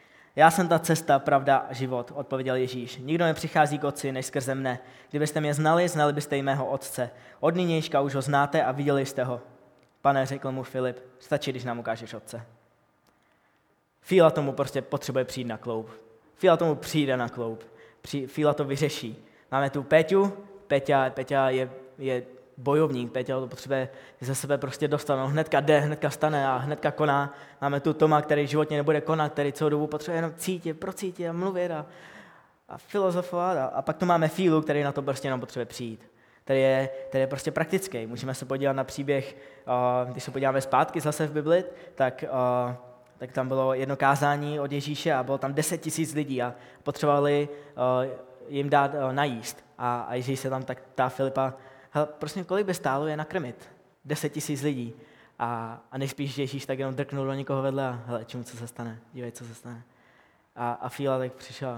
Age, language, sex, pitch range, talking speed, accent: 20-39, Czech, male, 130-150 Hz, 185 wpm, native